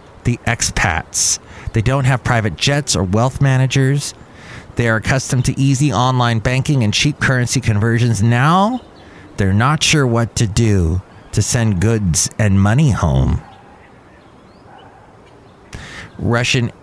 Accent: American